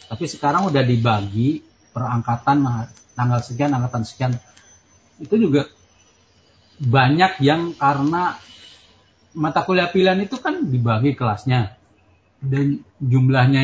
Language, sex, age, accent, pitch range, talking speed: Indonesian, male, 40-59, native, 110-145 Hz, 100 wpm